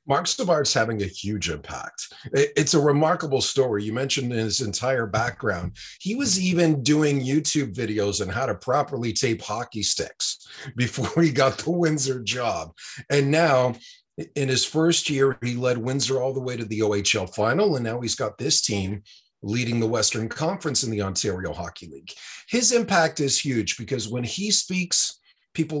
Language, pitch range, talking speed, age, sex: English, 115-150 Hz, 170 wpm, 40-59, male